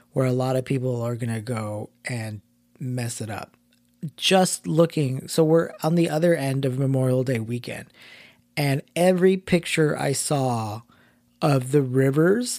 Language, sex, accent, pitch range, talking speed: English, male, American, 125-160 Hz, 155 wpm